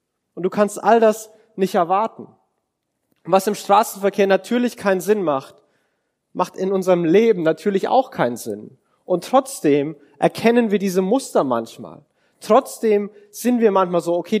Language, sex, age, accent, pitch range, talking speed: German, male, 30-49, German, 165-215 Hz, 145 wpm